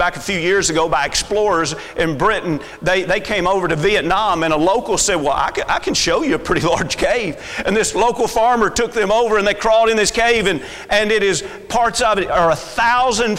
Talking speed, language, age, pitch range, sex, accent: 240 wpm, English, 40-59, 170-230 Hz, male, American